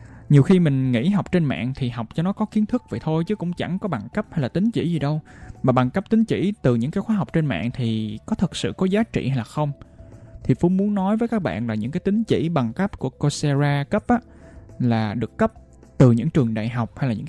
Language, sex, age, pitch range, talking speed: Vietnamese, male, 20-39, 120-175 Hz, 275 wpm